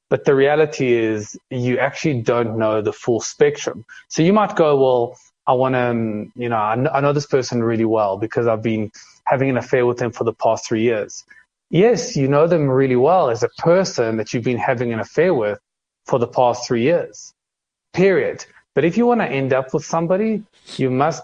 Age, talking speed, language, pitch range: 20-39, 205 wpm, English, 115-150 Hz